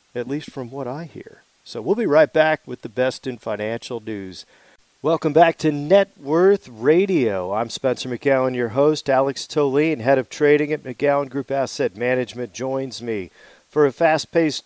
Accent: American